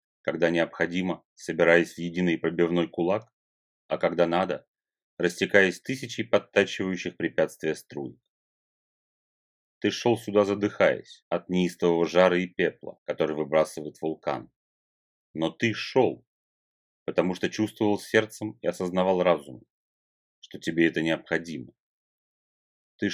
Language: Russian